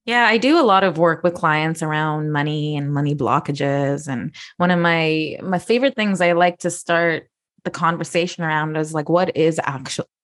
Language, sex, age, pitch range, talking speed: English, female, 20-39, 155-185 Hz, 195 wpm